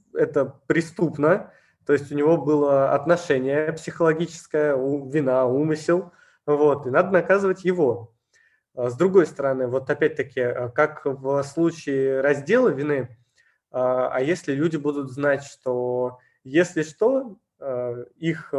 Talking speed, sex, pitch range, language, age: 110 wpm, male, 130-160 Hz, Russian, 20-39